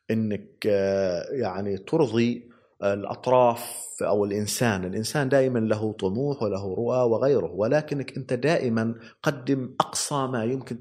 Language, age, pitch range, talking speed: English, 30-49, 105-135 Hz, 110 wpm